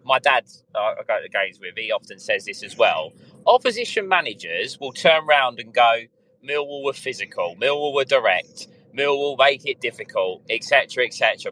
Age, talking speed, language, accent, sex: 30-49, 180 wpm, English, British, male